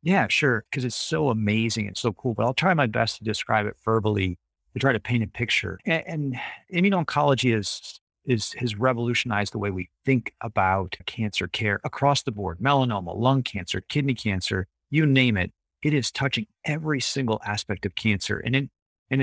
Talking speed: 190 wpm